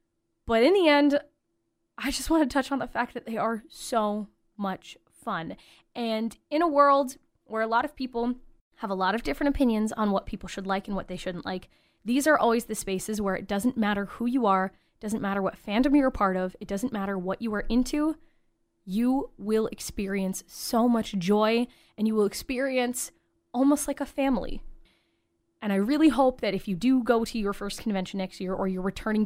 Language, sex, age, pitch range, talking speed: English, female, 10-29, 195-275 Hz, 210 wpm